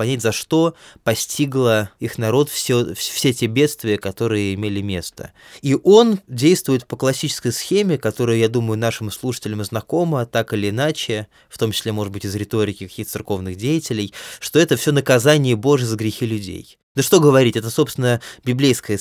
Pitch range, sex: 110-150 Hz, male